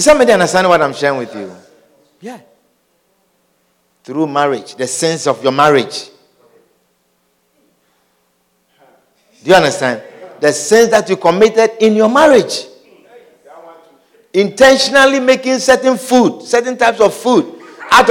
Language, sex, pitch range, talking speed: English, male, 180-285 Hz, 115 wpm